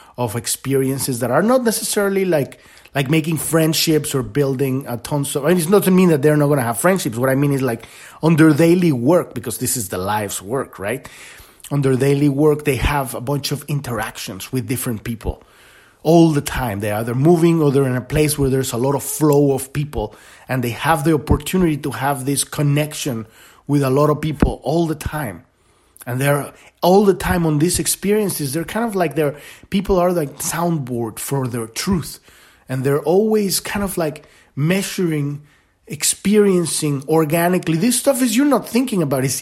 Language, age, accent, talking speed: English, 30-49, Mexican, 195 wpm